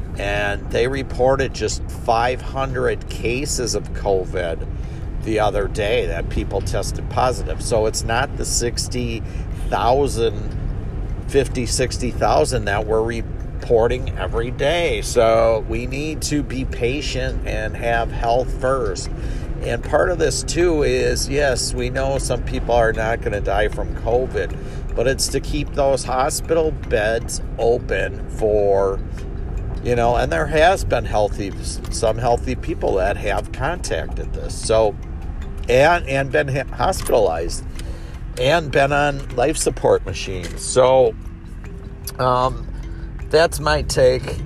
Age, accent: 50-69, American